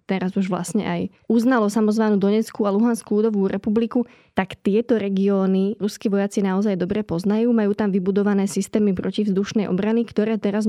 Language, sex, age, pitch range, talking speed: Slovak, female, 20-39, 195-220 Hz, 155 wpm